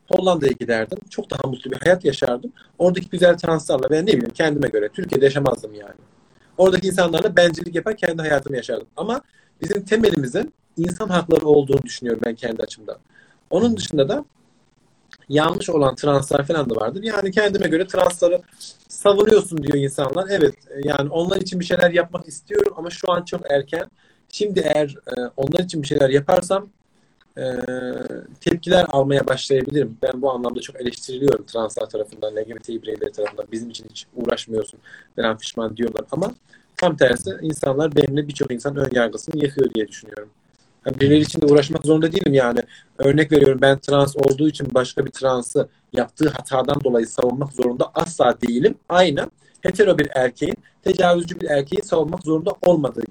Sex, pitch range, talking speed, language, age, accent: male, 130-180 Hz, 155 wpm, Turkish, 40-59, native